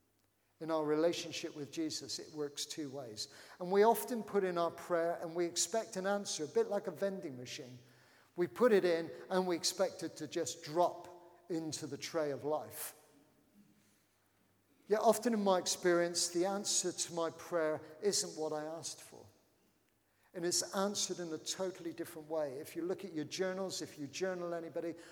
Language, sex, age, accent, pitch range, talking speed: English, male, 50-69, British, 150-190 Hz, 180 wpm